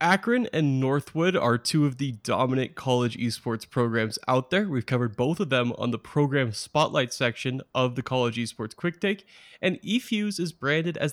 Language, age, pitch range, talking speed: English, 20-39, 130-170 Hz, 185 wpm